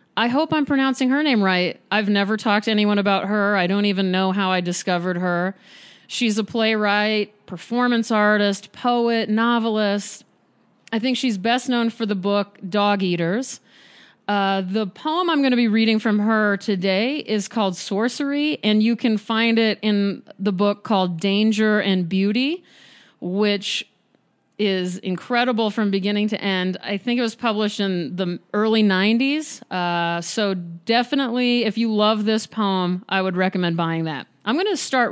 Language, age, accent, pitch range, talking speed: English, 40-59, American, 190-230 Hz, 165 wpm